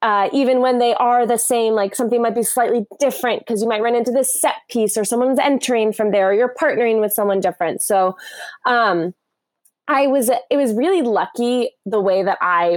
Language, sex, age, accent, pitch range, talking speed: English, female, 20-39, American, 195-260 Hz, 205 wpm